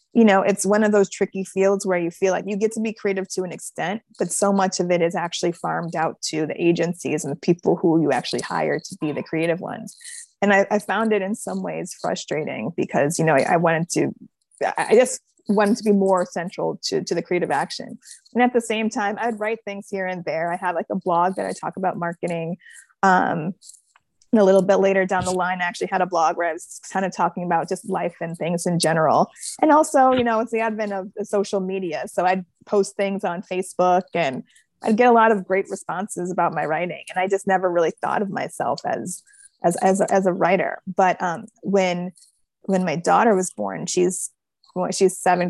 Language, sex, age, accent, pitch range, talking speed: English, female, 20-39, American, 175-205 Hz, 225 wpm